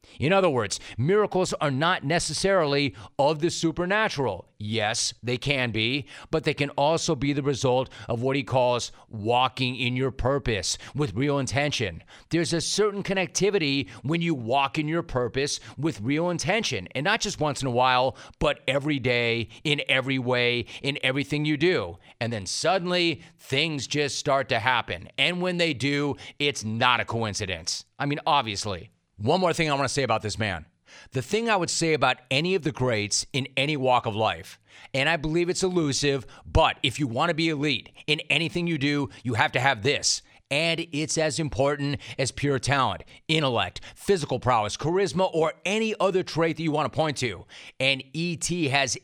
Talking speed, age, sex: 185 wpm, 40-59, male